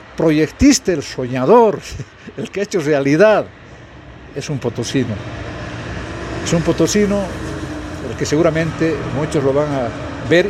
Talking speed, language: 125 wpm, English